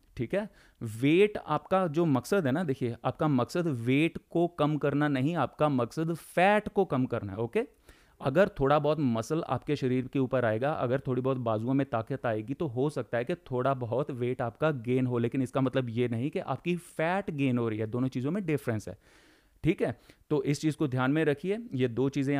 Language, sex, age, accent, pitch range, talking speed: Hindi, male, 30-49, native, 125-155 Hz, 215 wpm